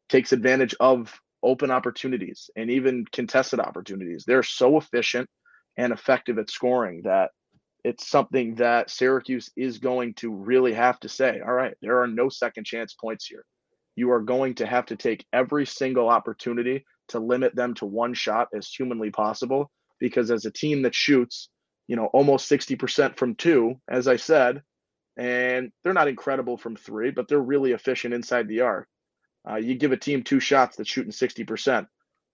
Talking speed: 175 wpm